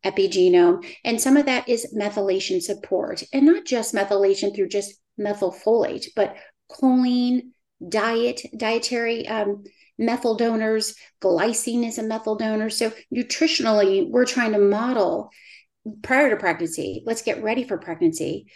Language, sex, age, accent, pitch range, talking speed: English, female, 40-59, American, 210-275 Hz, 135 wpm